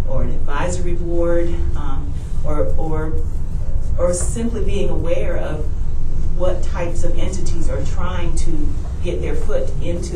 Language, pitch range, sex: English, 75-85 Hz, female